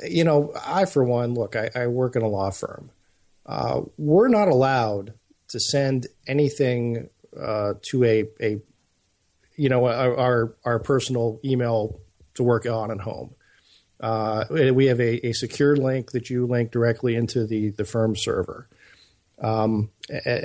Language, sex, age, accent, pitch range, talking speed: English, male, 50-69, American, 110-130 Hz, 160 wpm